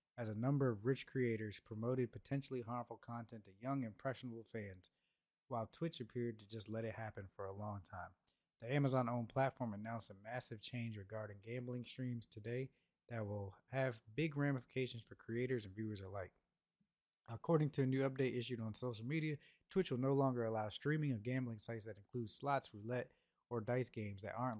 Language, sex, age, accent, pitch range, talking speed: English, male, 20-39, American, 110-130 Hz, 180 wpm